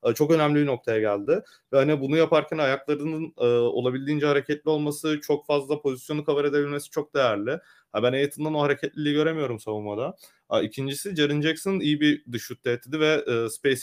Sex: male